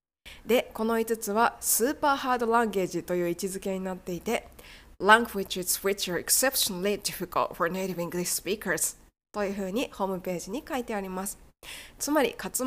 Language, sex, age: Japanese, female, 20-39